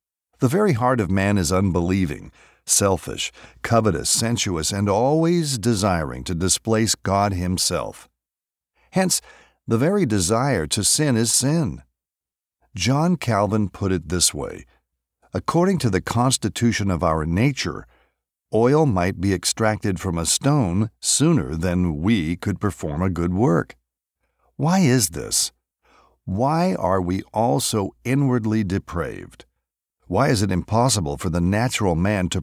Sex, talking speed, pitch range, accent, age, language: male, 135 wpm, 90-120 Hz, American, 60-79, Spanish